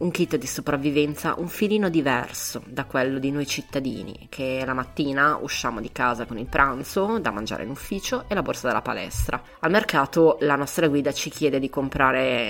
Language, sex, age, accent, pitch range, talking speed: Italian, female, 20-39, native, 125-150 Hz, 185 wpm